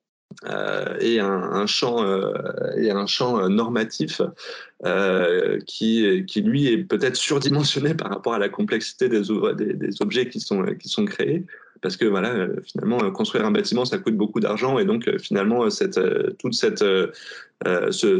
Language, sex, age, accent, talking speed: French, male, 20-39, French, 195 wpm